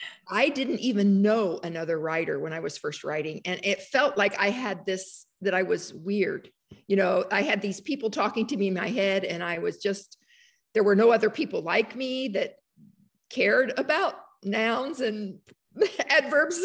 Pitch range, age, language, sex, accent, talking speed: 200-285 Hz, 50-69, English, female, American, 185 wpm